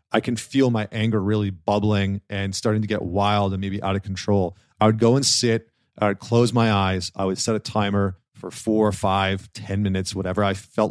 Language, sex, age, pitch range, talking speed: English, male, 40-59, 100-115 Hz, 220 wpm